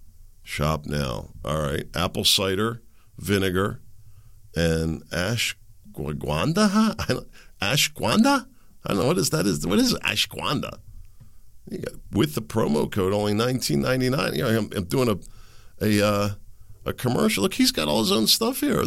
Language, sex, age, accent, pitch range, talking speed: English, male, 50-69, American, 95-145 Hz, 155 wpm